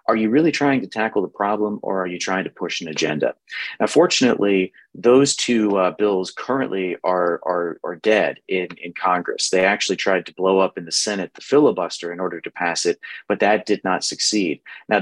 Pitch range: 90-105 Hz